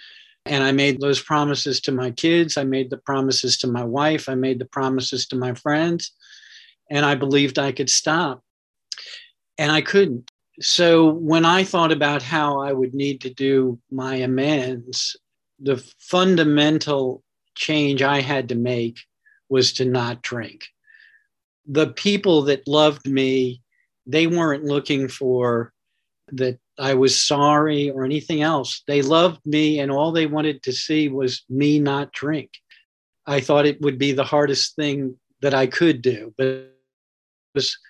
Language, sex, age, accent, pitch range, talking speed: English, male, 50-69, American, 130-150 Hz, 155 wpm